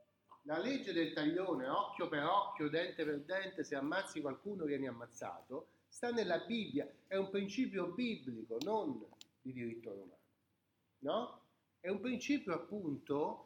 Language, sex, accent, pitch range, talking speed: Italian, male, native, 140-215 Hz, 135 wpm